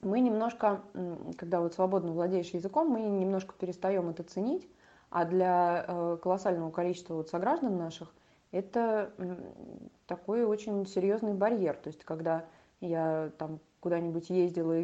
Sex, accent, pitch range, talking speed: female, native, 160-195 Hz, 130 wpm